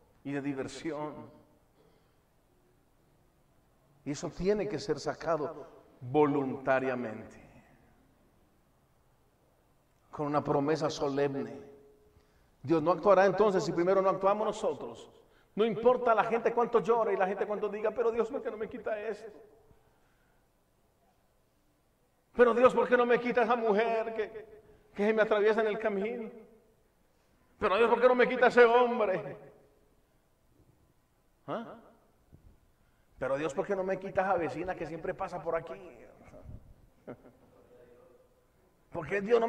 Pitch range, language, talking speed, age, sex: 150-230 Hz, Spanish, 130 wpm, 40-59, male